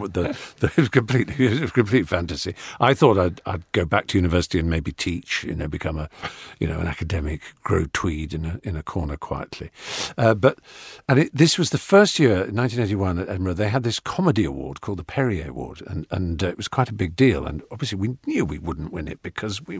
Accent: British